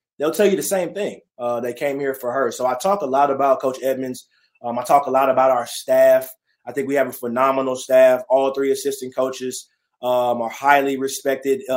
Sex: male